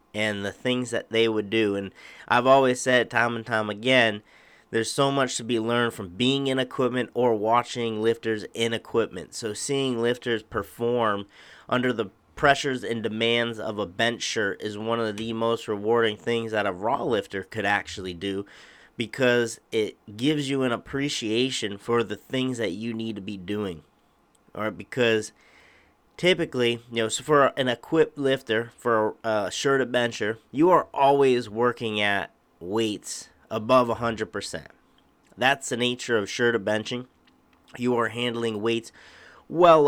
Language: English